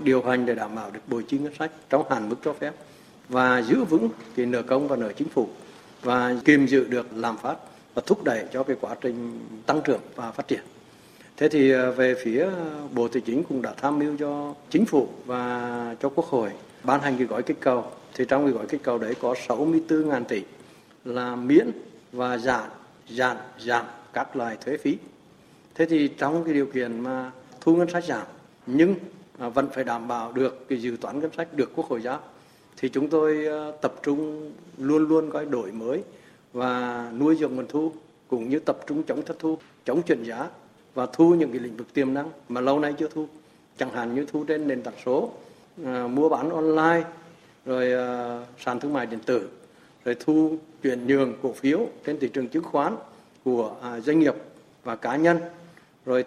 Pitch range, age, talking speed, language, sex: 125-155 Hz, 60-79, 200 wpm, Vietnamese, male